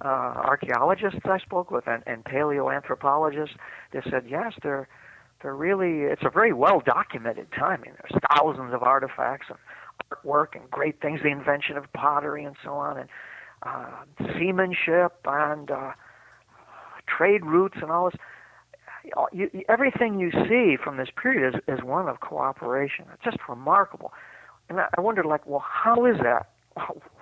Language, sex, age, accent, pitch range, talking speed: English, male, 50-69, American, 140-190 Hz, 160 wpm